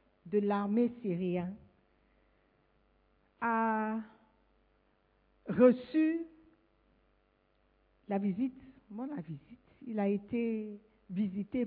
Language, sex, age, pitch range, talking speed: French, female, 50-69, 190-255 Hz, 70 wpm